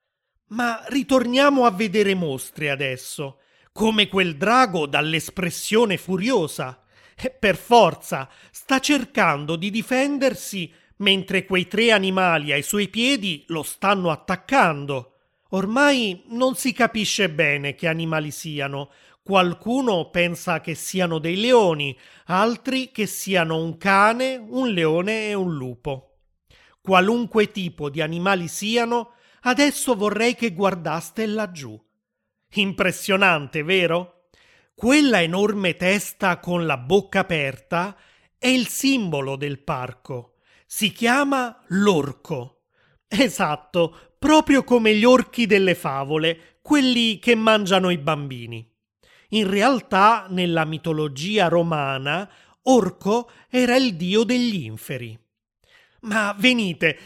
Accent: native